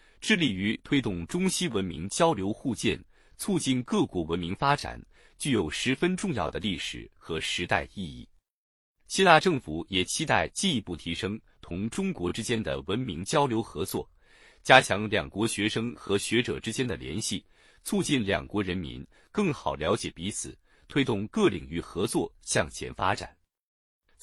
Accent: native